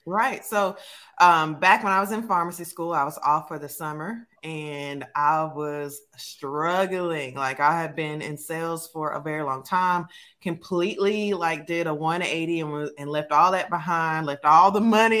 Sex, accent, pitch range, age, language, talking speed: female, American, 155-195 Hz, 20-39, English, 180 wpm